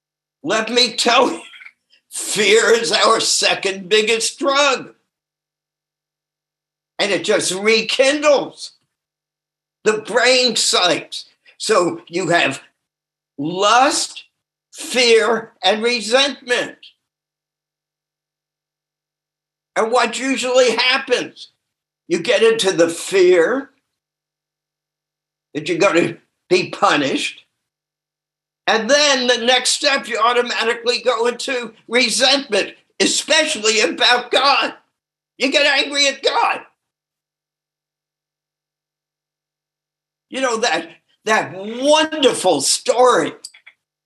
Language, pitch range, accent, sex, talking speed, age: English, 155-245 Hz, American, male, 85 wpm, 60-79